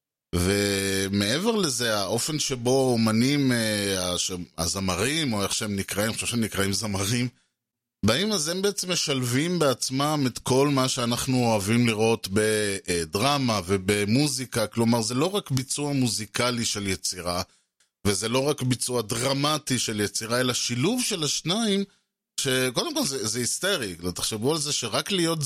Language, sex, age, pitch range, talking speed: Hebrew, male, 30-49, 105-145 Hz, 135 wpm